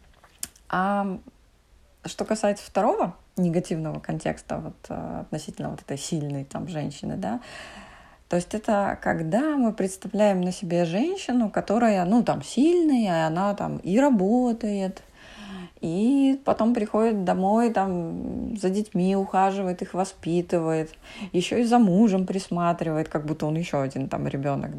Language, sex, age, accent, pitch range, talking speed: Russian, female, 20-39, native, 160-210 Hz, 130 wpm